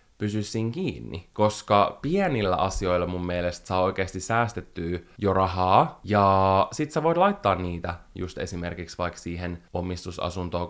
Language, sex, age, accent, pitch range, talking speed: Finnish, male, 20-39, native, 90-105 Hz, 135 wpm